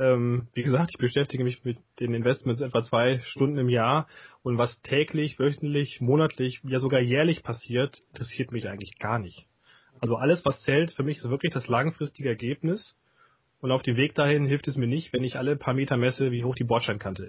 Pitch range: 120-140 Hz